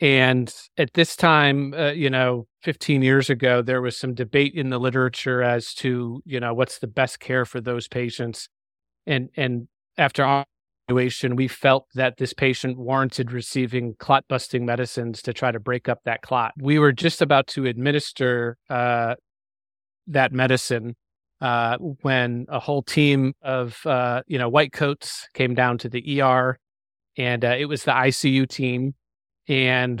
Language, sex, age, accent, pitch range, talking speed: English, male, 40-59, American, 120-135 Hz, 160 wpm